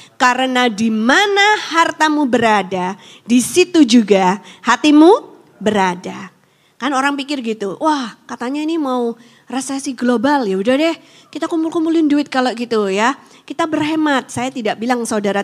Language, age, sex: Indonesian, 20-39, female